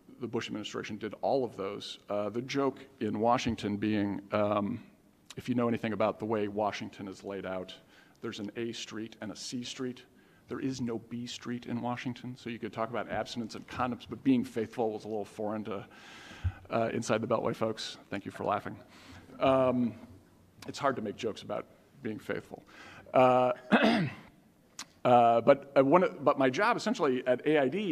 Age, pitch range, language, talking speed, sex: 50-69, 110-130 Hz, English, 180 wpm, male